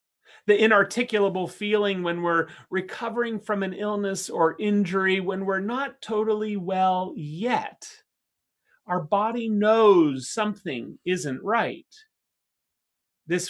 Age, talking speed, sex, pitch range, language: 30-49, 105 wpm, male, 160-225 Hz, English